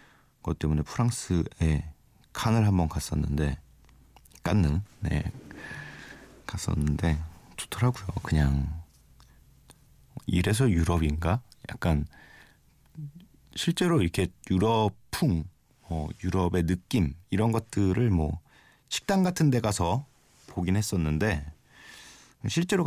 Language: Korean